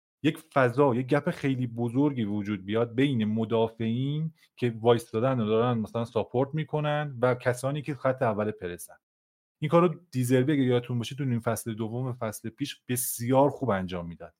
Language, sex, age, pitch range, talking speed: Persian, male, 30-49, 115-145 Hz, 165 wpm